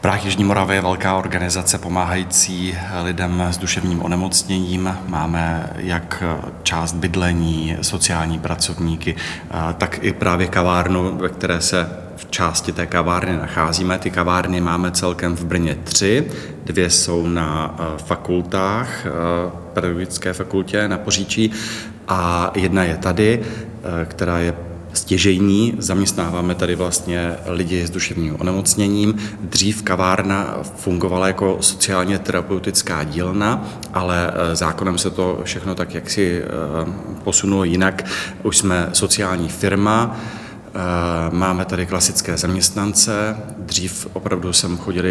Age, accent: 30-49, native